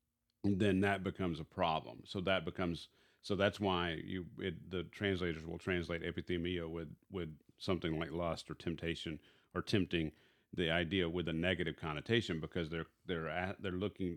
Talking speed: 165 wpm